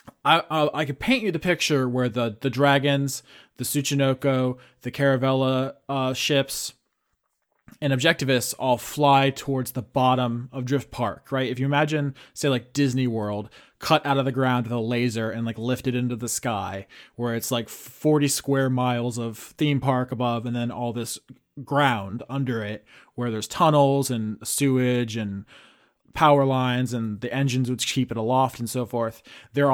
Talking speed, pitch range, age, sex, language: 175 wpm, 120-140 Hz, 20-39, male, English